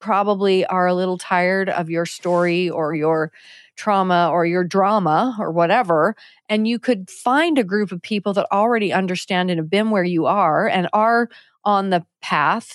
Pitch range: 185-235 Hz